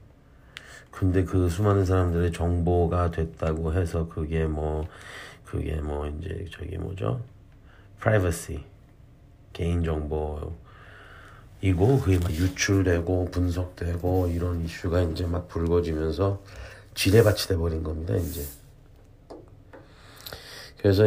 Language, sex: Korean, male